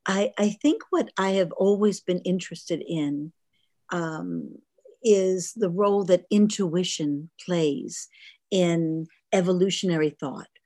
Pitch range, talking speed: 160-190 Hz, 115 wpm